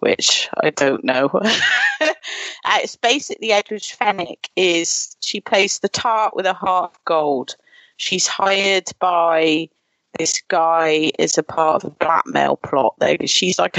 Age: 30-49